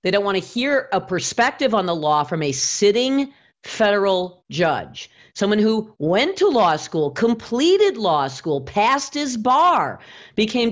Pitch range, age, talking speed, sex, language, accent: 180-250 Hz, 40-59, 150 wpm, female, English, American